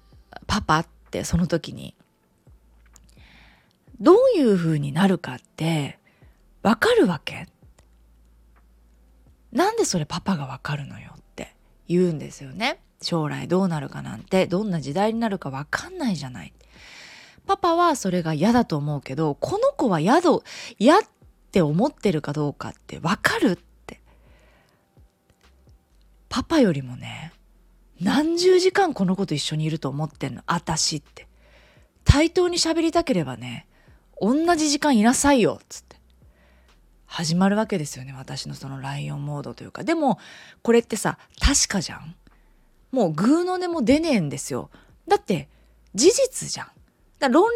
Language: Japanese